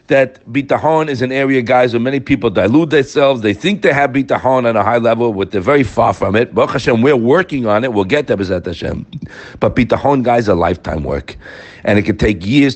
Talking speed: 225 wpm